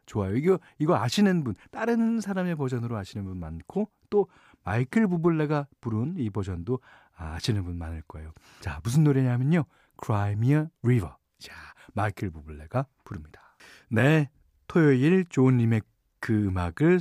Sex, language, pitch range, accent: male, Korean, 95-150 Hz, native